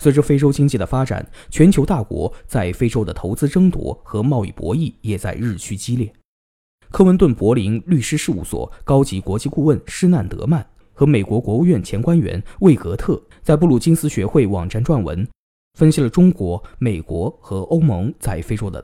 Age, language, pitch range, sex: 20-39, Chinese, 100-150 Hz, male